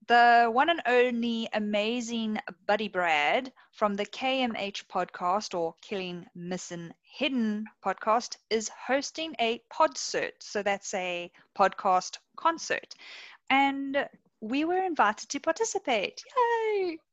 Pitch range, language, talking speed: 205-275 Hz, English, 110 wpm